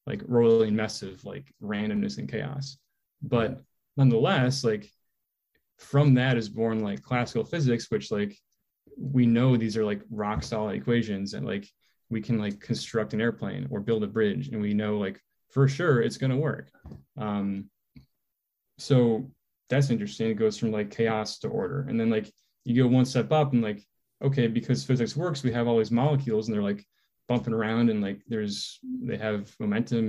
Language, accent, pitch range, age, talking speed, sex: English, American, 105-130 Hz, 10-29, 180 wpm, male